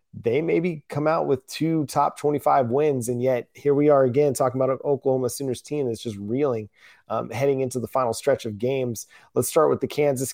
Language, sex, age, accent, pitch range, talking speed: English, male, 30-49, American, 120-145 Hz, 215 wpm